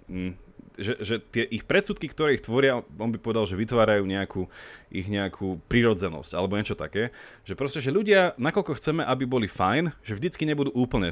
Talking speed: 180 wpm